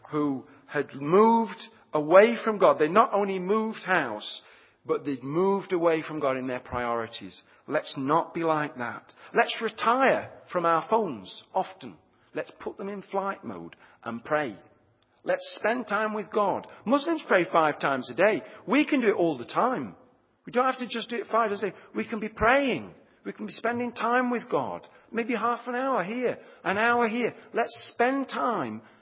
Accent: British